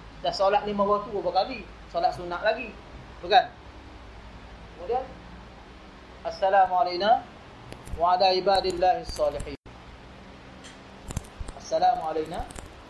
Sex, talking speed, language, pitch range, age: male, 70 wpm, Malay, 180-250 Hz, 30-49